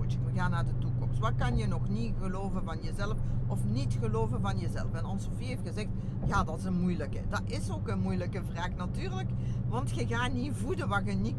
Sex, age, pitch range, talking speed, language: female, 50-69, 100-115 Hz, 220 wpm, Dutch